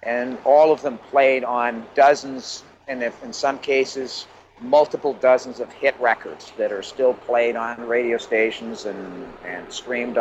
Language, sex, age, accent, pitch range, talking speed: English, male, 50-69, American, 125-160 Hz, 160 wpm